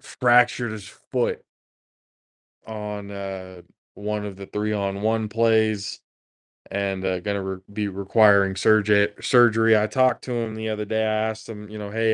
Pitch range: 100-115 Hz